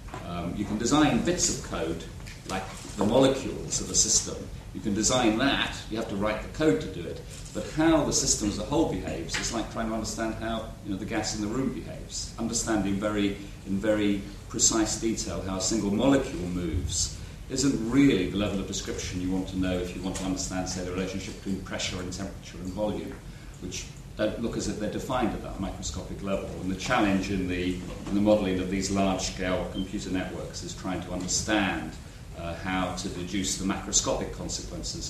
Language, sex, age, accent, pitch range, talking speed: English, male, 40-59, British, 90-110 Hz, 200 wpm